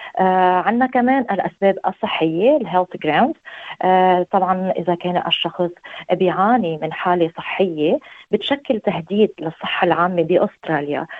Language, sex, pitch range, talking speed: Arabic, female, 160-190 Hz, 105 wpm